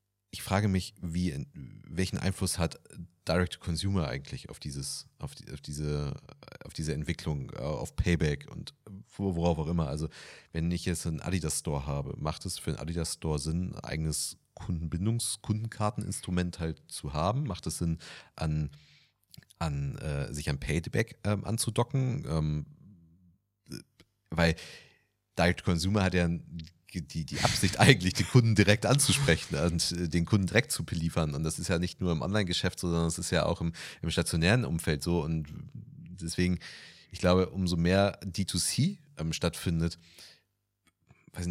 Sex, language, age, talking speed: male, German, 40-59, 160 wpm